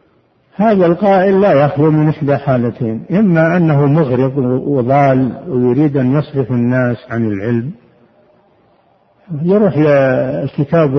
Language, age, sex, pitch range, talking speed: Arabic, 60-79, male, 130-160 Hz, 105 wpm